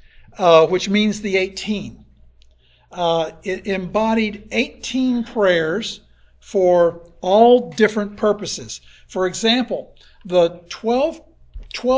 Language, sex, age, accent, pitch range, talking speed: English, male, 60-79, American, 175-215 Hz, 85 wpm